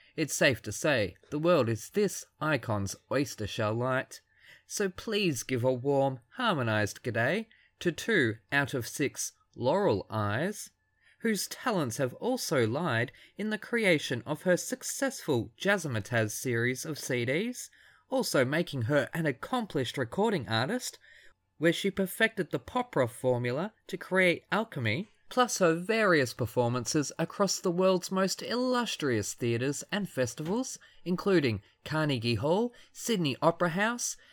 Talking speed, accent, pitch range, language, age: 130 wpm, Australian, 125-200 Hz, English, 20-39